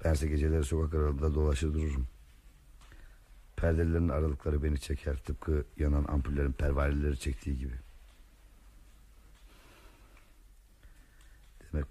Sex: male